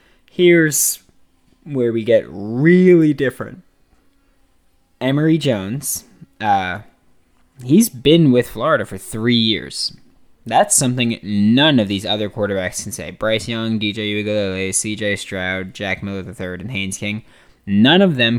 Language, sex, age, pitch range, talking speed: English, male, 20-39, 95-125 Hz, 130 wpm